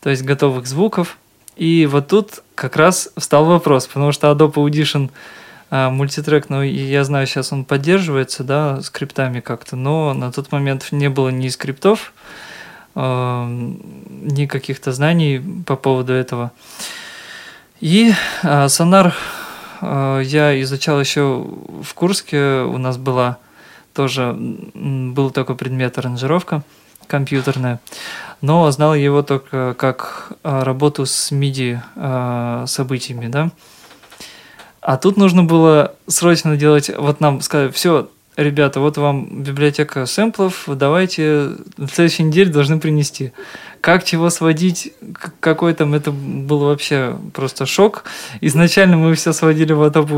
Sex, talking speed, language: male, 125 wpm, Russian